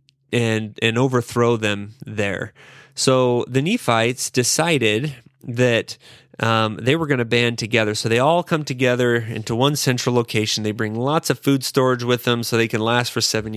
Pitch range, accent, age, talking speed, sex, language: 110-140 Hz, American, 30-49, 175 wpm, male, English